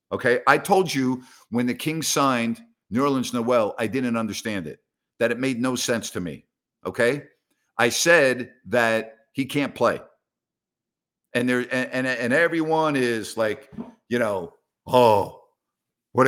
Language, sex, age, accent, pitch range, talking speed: English, male, 50-69, American, 115-145 Hz, 150 wpm